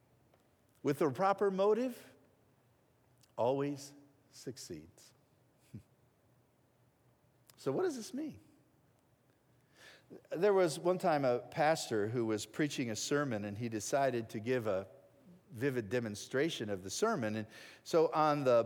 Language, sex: English, male